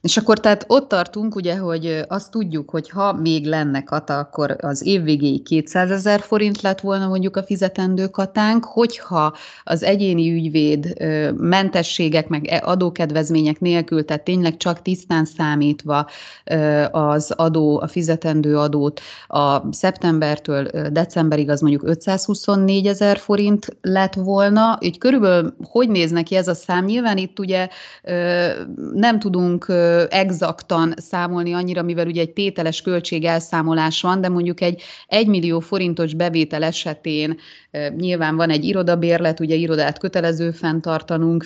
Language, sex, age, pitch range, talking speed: Hungarian, female, 30-49, 160-185 Hz, 130 wpm